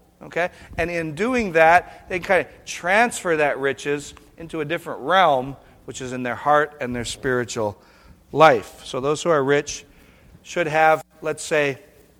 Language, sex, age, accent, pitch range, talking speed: English, male, 50-69, American, 125-180 Hz, 160 wpm